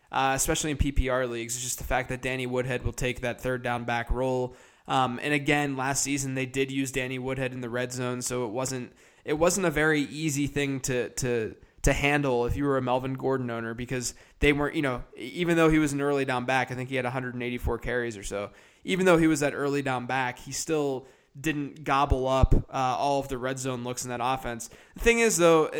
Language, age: English, 20-39